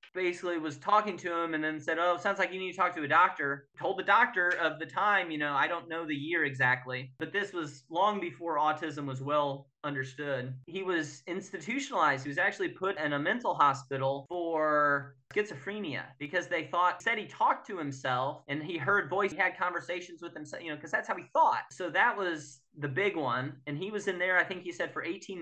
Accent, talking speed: American, 225 wpm